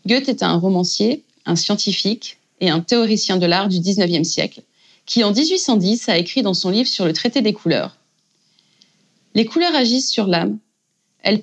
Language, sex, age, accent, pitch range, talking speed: French, female, 30-49, French, 190-255 Hz, 175 wpm